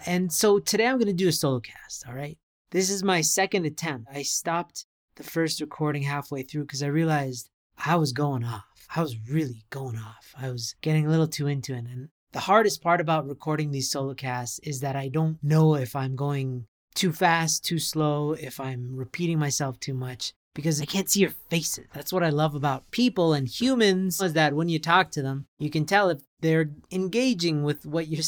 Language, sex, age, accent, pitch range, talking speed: English, male, 30-49, American, 135-175 Hz, 215 wpm